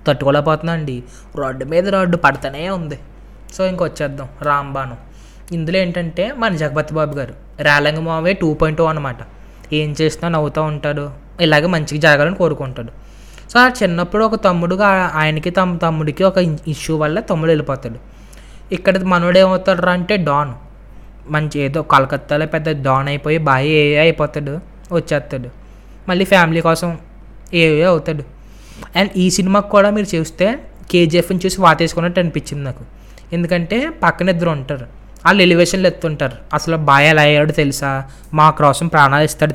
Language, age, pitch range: Telugu, 20-39, 145-175 Hz